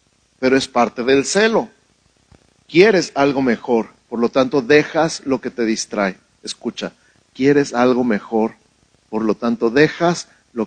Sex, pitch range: male, 115-165 Hz